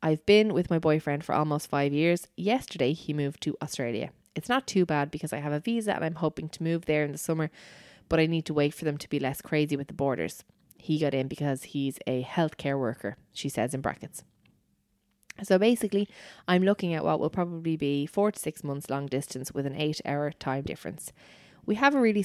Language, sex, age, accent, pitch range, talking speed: English, female, 20-39, Irish, 145-180 Hz, 225 wpm